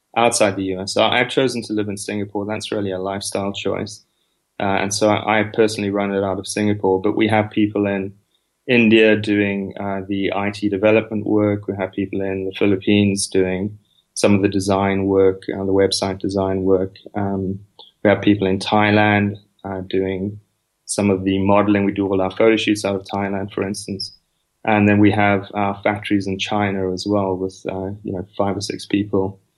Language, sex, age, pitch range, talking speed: English, male, 20-39, 95-105 Hz, 200 wpm